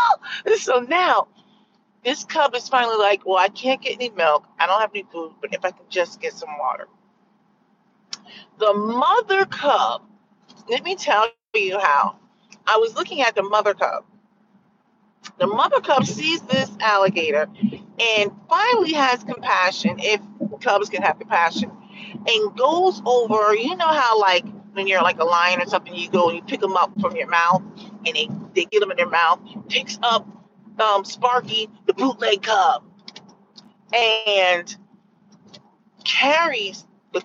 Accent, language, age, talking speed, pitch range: American, English, 40-59, 160 wpm, 200-255 Hz